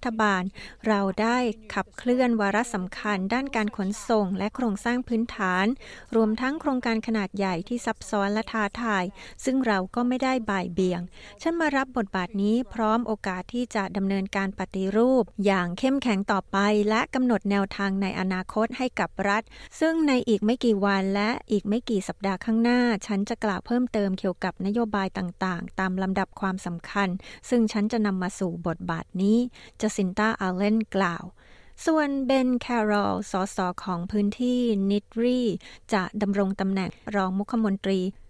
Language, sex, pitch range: Thai, female, 195-230 Hz